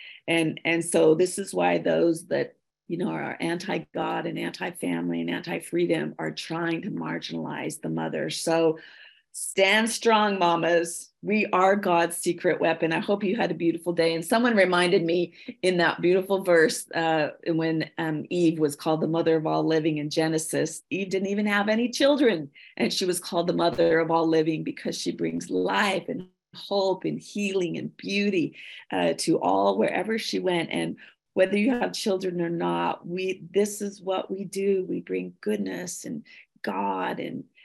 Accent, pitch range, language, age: American, 155-195 Hz, English, 40-59